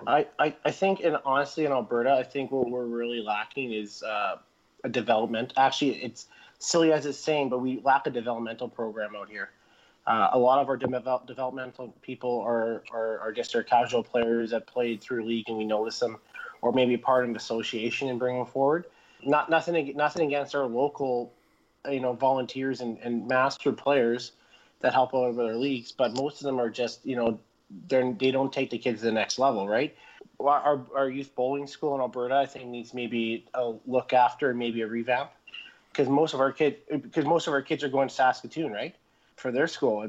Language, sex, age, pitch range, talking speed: English, male, 20-39, 120-135 Hz, 205 wpm